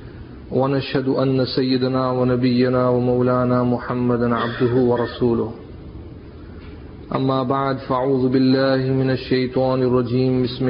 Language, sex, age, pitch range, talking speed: English, male, 40-59, 125-135 Hz, 90 wpm